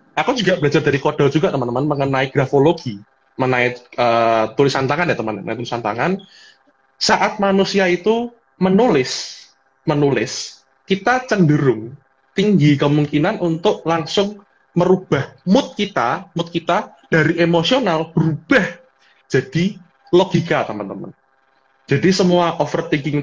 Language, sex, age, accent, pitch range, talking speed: Indonesian, male, 20-39, native, 135-180 Hz, 110 wpm